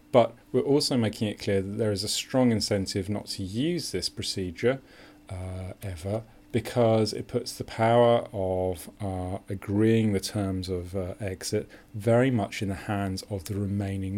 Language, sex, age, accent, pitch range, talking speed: English, male, 30-49, British, 95-115 Hz, 170 wpm